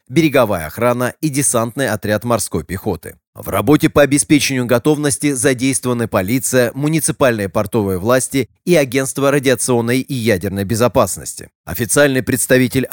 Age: 30-49